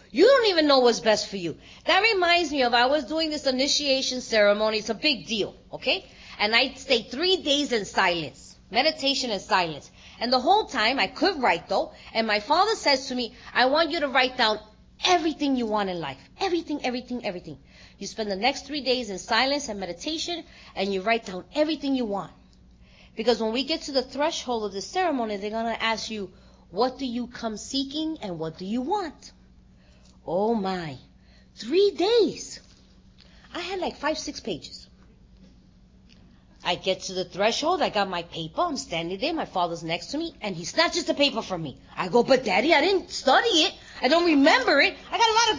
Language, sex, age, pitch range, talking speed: English, female, 30-49, 210-330 Hz, 205 wpm